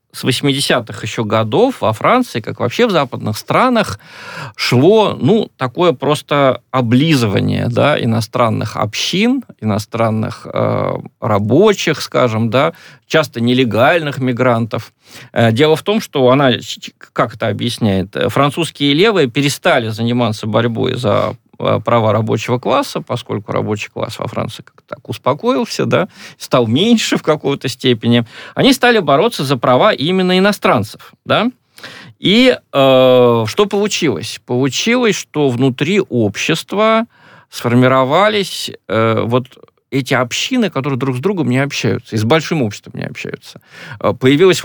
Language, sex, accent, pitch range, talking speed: Russian, male, native, 115-150 Hz, 125 wpm